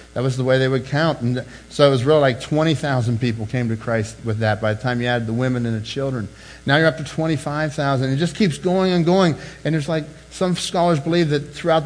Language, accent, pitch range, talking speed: English, American, 120-160 Hz, 245 wpm